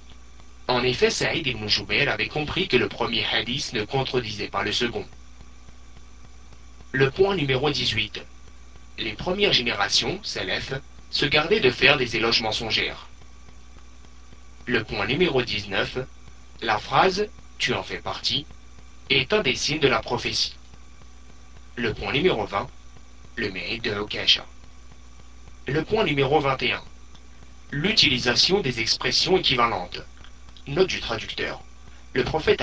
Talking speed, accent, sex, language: 125 wpm, French, male, French